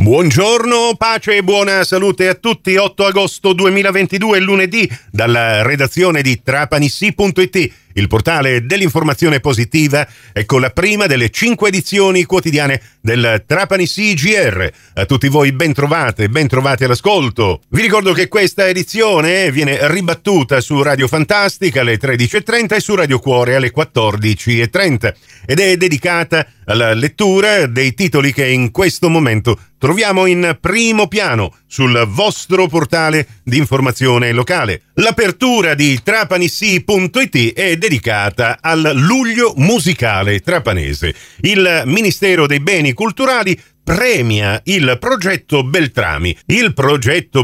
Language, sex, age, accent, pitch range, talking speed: Italian, male, 50-69, native, 120-185 Hz, 120 wpm